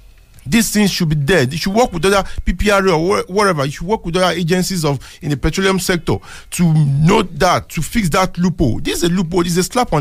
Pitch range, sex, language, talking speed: 145-195 Hz, male, English, 240 wpm